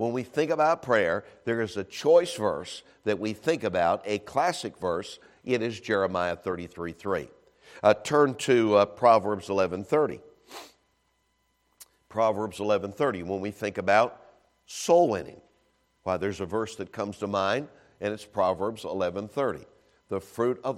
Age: 60-79